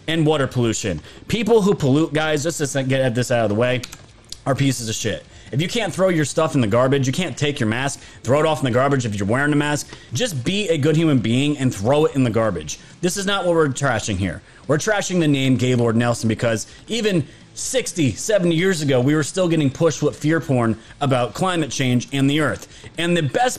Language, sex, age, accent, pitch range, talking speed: English, male, 30-49, American, 125-180 Hz, 235 wpm